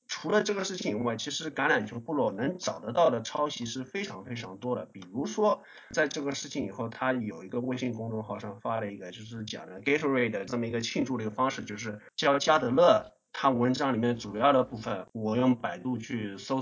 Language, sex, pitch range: Chinese, male, 115-145 Hz